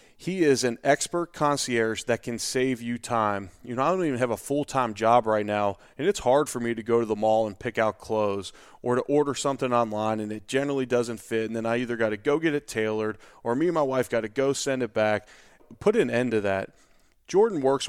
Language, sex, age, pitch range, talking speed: English, male, 30-49, 115-140 Hz, 245 wpm